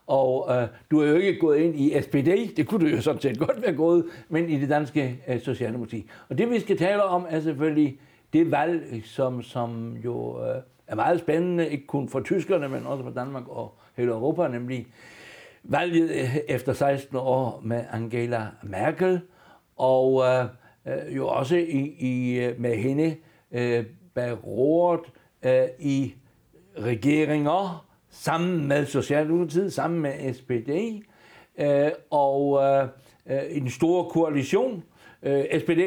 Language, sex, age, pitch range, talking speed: Danish, male, 60-79, 130-170 Hz, 145 wpm